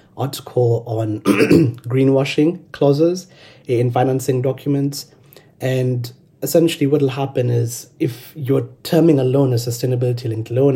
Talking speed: 115 wpm